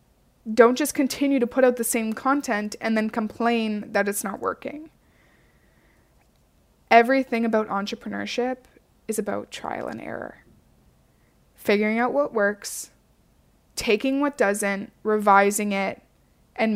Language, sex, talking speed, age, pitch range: English, female, 120 wpm, 20-39, 215-255 Hz